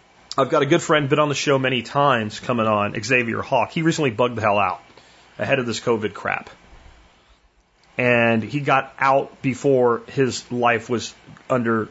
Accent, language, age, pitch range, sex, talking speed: American, English, 30-49, 110-165 Hz, male, 175 wpm